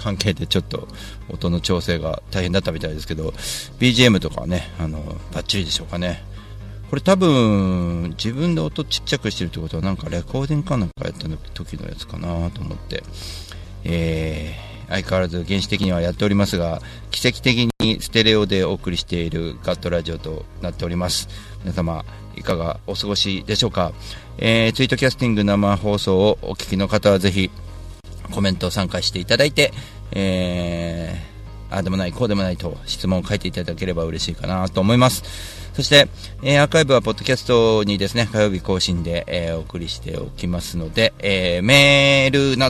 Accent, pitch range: native, 85-105 Hz